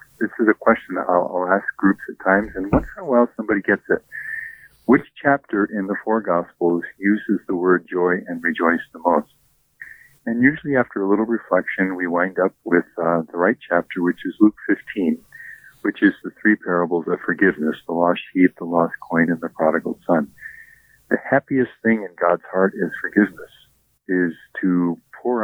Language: English